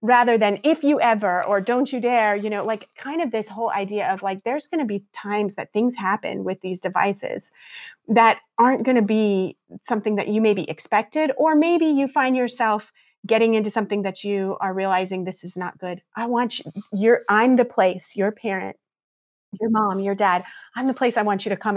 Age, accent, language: 30-49, American, English